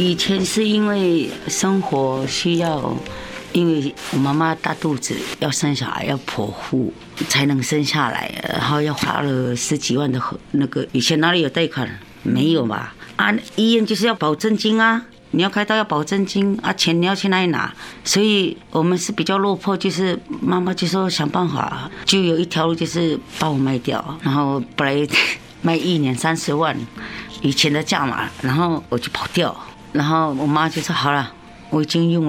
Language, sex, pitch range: Chinese, female, 140-175 Hz